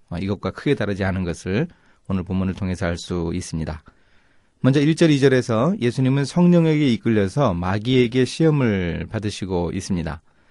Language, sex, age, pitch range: Korean, male, 30-49, 95-130 Hz